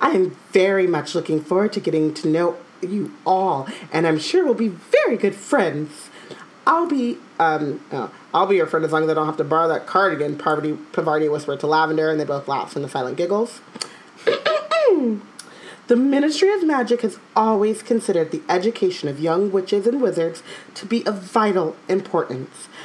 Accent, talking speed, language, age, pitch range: American, 185 wpm, English, 40-59, 170-255 Hz